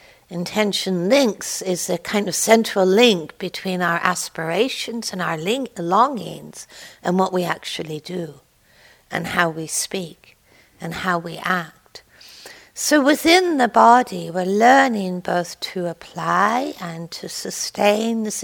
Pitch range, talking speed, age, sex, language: 175-225 Hz, 130 wpm, 60-79, female, English